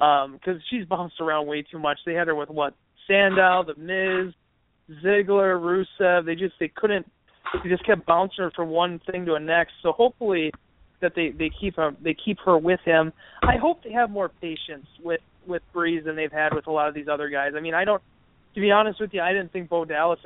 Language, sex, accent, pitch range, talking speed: English, male, American, 150-175 Hz, 230 wpm